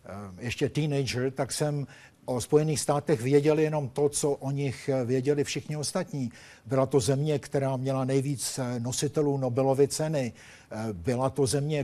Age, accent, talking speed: 50-69, native, 140 wpm